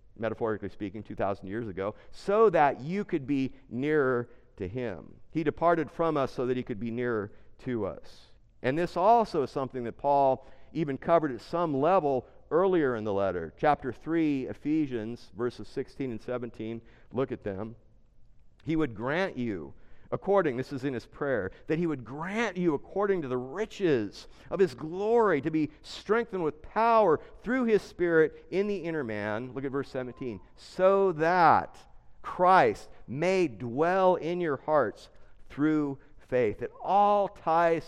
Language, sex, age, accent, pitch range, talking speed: English, male, 50-69, American, 115-165 Hz, 160 wpm